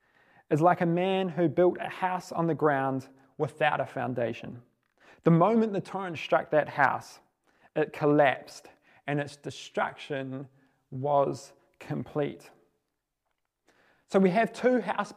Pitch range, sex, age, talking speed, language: 150-200 Hz, male, 20-39, 130 wpm, English